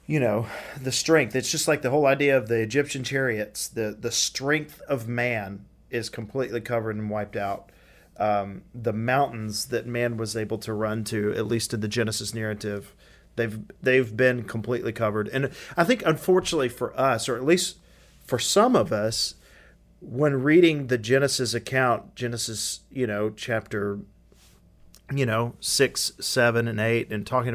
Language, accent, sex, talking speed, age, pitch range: English, American, male, 165 wpm, 40-59, 110-130 Hz